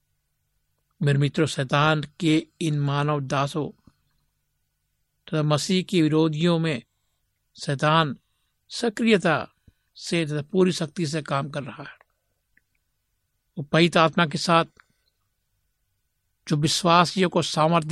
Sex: male